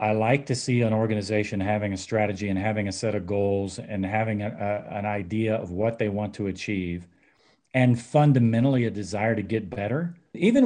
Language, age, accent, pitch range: English, 40-59, American, 105-135 Hz